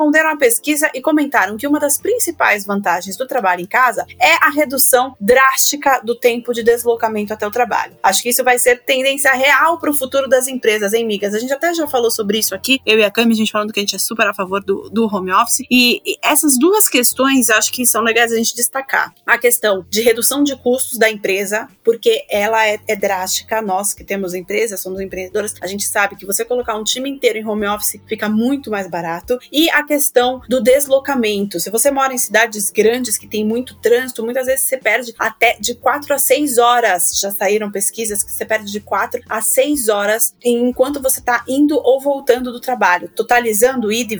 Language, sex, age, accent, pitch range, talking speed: Portuguese, female, 20-39, Brazilian, 210-265 Hz, 215 wpm